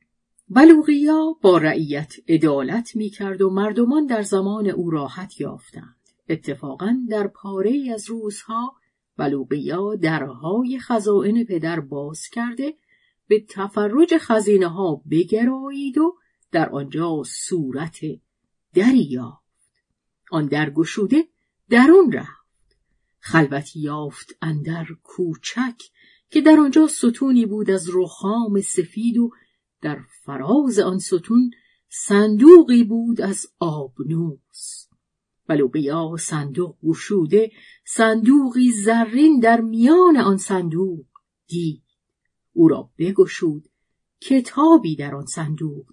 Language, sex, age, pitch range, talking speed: Persian, female, 50-69, 160-240 Hz, 100 wpm